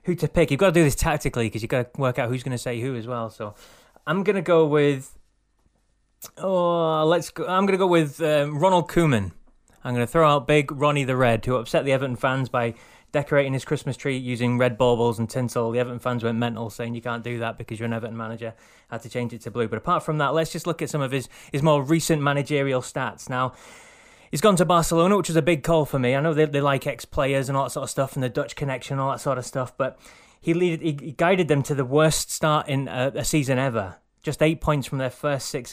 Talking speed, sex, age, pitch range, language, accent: 260 wpm, male, 20-39, 120-150 Hz, English, British